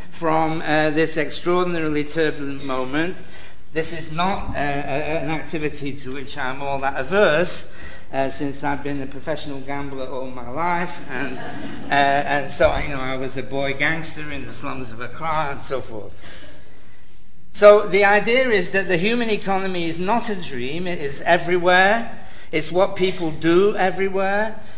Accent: British